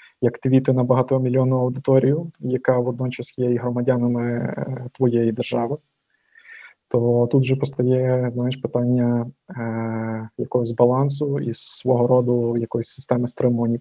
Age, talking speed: 20-39, 115 wpm